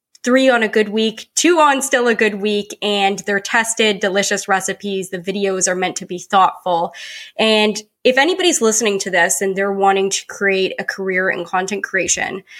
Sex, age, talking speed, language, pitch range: female, 20-39, 185 wpm, English, 190-225 Hz